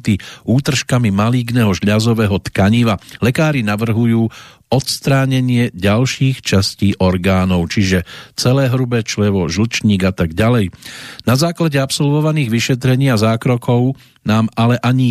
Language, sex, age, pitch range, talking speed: Slovak, male, 50-69, 100-130 Hz, 105 wpm